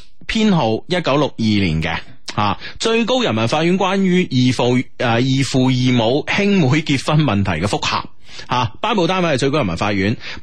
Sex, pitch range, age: male, 105-175 Hz, 30-49